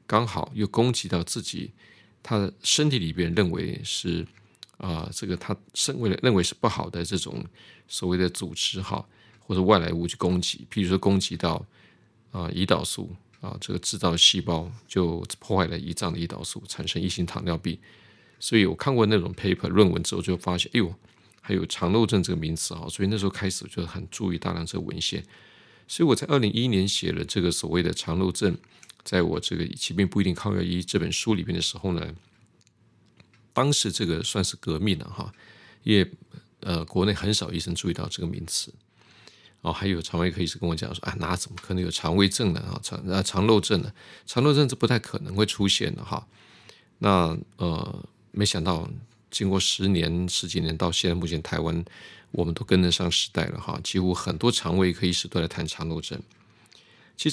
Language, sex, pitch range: Chinese, male, 85-105 Hz